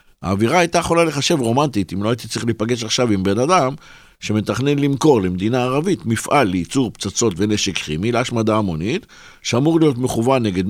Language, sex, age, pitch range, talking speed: Hebrew, male, 60-79, 100-130 Hz, 165 wpm